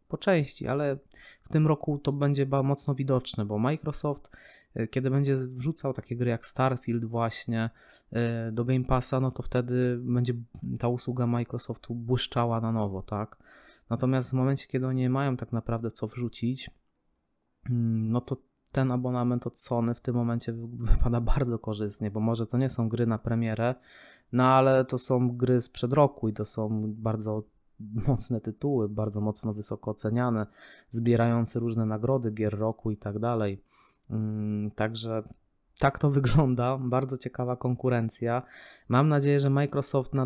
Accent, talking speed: native, 150 wpm